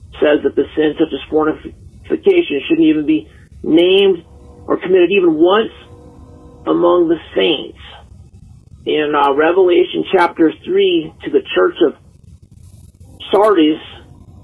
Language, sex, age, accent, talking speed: English, male, 50-69, American, 115 wpm